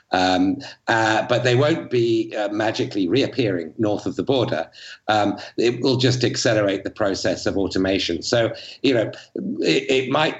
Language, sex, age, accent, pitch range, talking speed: English, male, 50-69, British, 100-120 Hz, 160 wpm